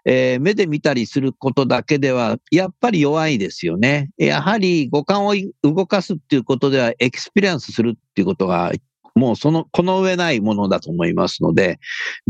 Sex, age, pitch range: male, 50-69, 125-200 Hz